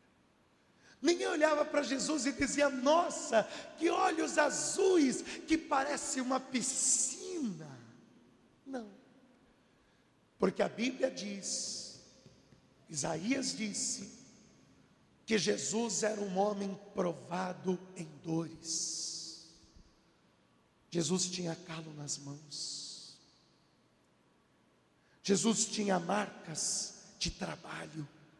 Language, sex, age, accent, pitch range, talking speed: Portuguese, male, 50-69, Brazilian, 200-275 Hz, 80 wpm